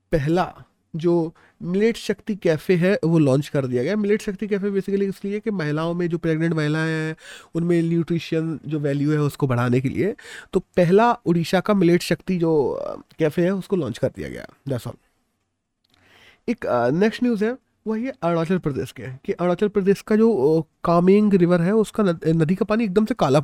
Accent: native